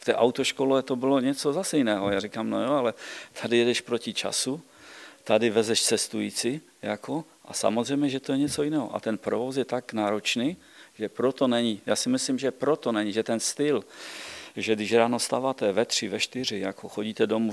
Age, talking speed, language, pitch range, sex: 50-69, 190 wpm, Czech, 105-130 Hz, male